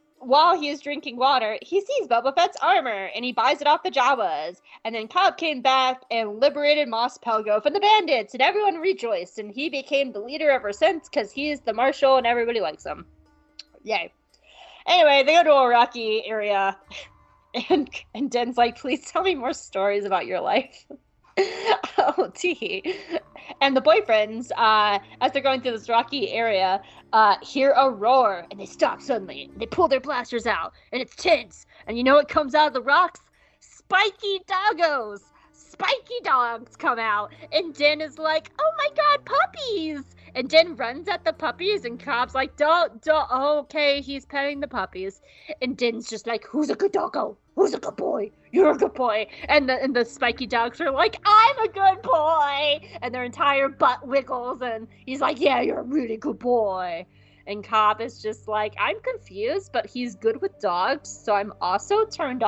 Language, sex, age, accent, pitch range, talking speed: English, female, 20-39, American, 230-325 Hz, 185 wpm